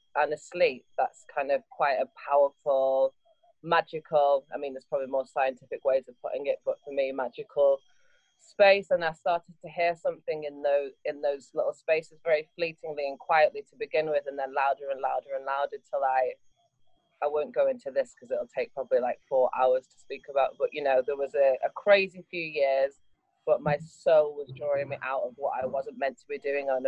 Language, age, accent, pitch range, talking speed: English, 20-39, British, 140-200 Hz, 210 wpm